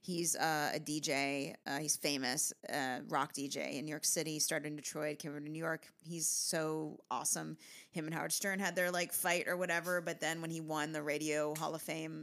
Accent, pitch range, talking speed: American, 150-180 Hz, 220 wpm